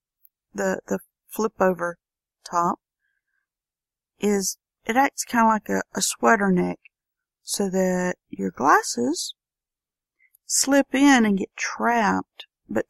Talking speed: 110 wpm